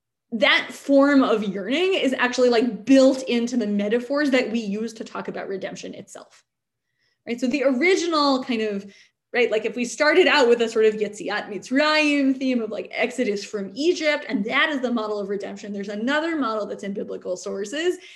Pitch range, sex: 210-275 Hz, female